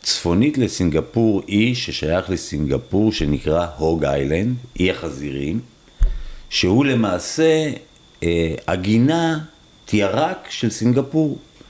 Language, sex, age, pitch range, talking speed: Hebrew, male, 50-69, 80-125 Hz, 85 wpm